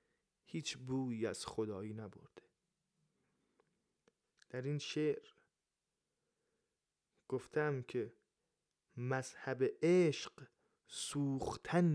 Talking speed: 65 wpm